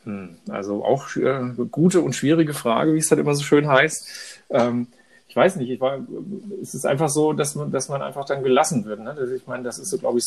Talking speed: 230 wpm